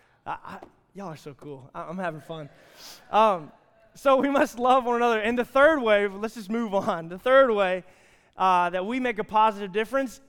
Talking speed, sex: 205 wpm, male